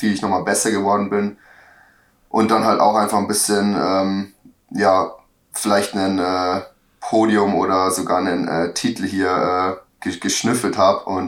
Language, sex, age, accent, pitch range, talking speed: German, male, 10-29, German, 90-100 Hz, 155 wpm